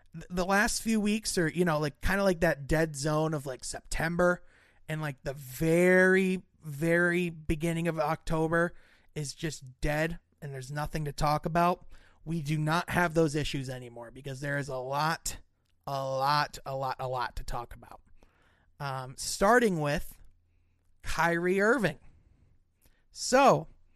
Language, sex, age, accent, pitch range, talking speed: English, male, 30-49, American, 140-195 Hz, 155 wpm